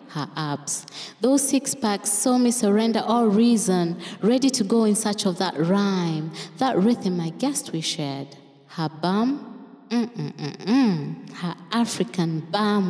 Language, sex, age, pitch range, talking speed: French, female, 20-39, 160-210 Hz, 145 wpm